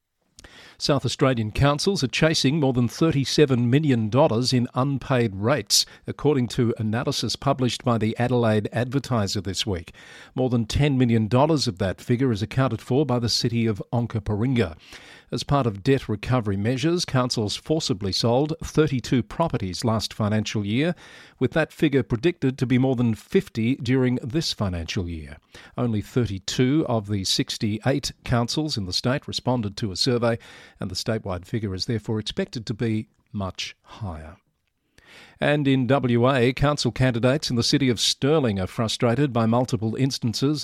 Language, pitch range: English, 110-135 Hz